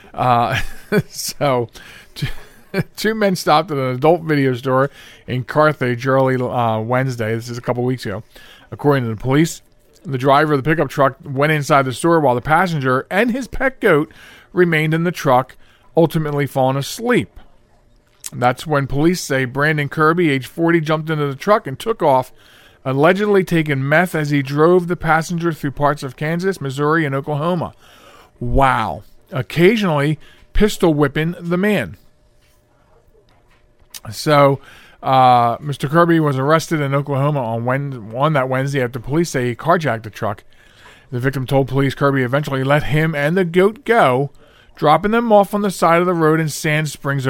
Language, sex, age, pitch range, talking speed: English, male, 40-59, 130-160 Hz, 165 wpm